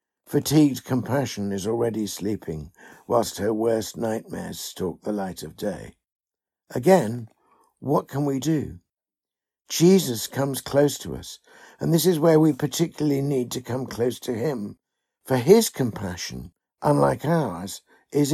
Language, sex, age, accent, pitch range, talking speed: English, male, 60-79, British, 110-155 Hz, 135 wpm